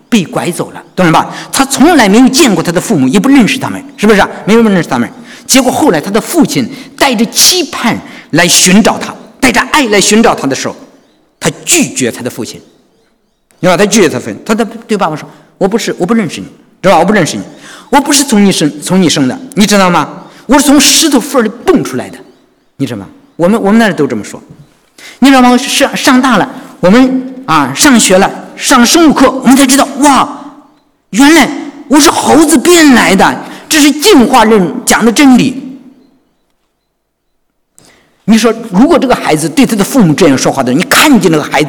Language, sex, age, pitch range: English, male, 50-69, 190-280 Hz